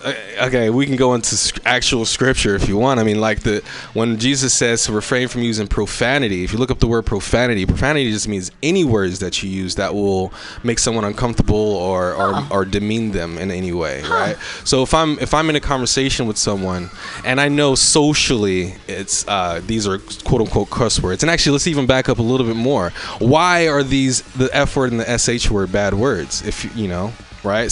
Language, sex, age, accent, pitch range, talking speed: English, male, 20-39, American, 100-130 Hz, 215 wpm